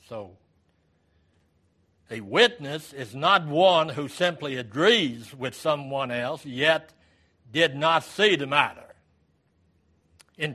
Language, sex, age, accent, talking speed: English, male, 60-79, American, 110 wpm